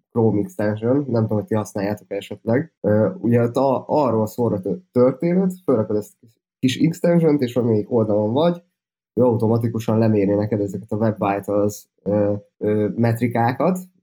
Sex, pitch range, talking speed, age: male, 105-125 Hz, 135 wpm, 20-39